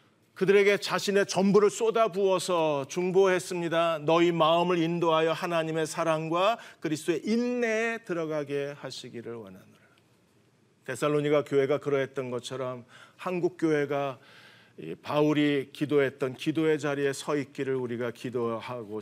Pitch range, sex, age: 145-195 Hz, male, 40-59